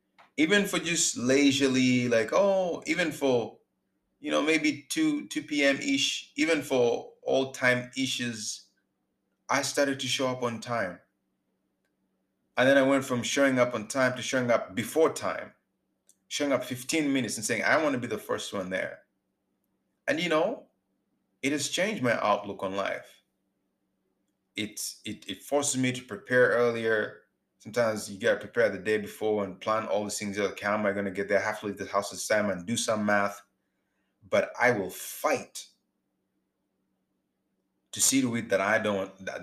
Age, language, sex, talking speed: 30-49, English, male, 175 wpm